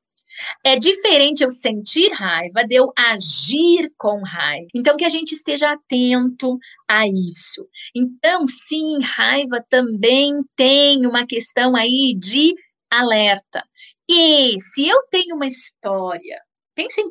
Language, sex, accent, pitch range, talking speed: Portuguese, female, Brazilian, 210-290 Hz, 125 wpm